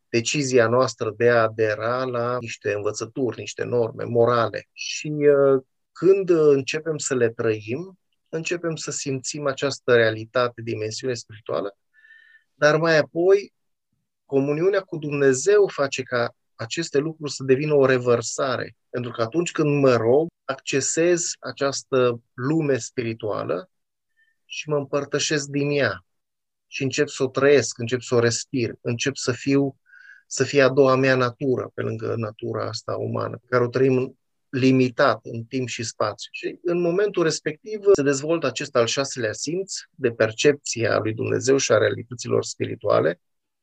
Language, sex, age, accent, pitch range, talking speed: Romanian, male, 30-49, native, 120-155 Hz, 145 wpm